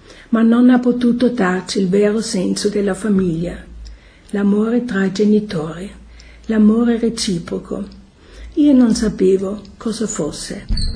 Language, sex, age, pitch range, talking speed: Italian, female, 60-79, 195-230 Hz, 115 wpm